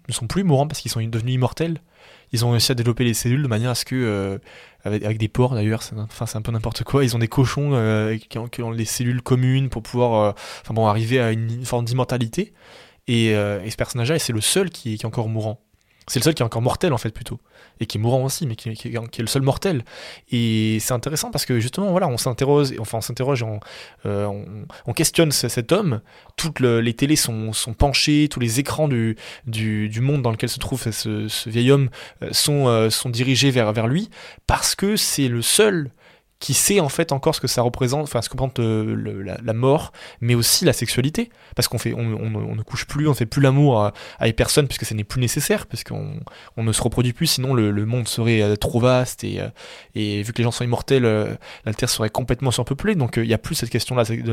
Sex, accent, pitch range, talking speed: male, French, 115-135 Hz, 240 wpm